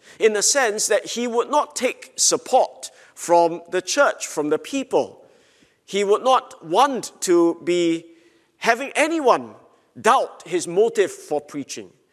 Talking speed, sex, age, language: 140 wpm, male, 50-69, English